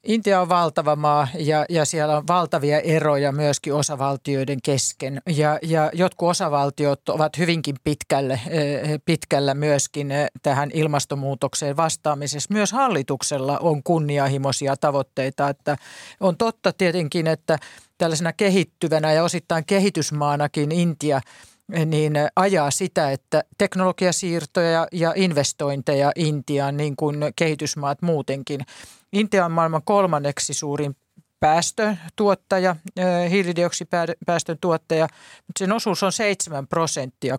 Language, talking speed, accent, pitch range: Finnish, 105 wpm, native, 145-175 Hz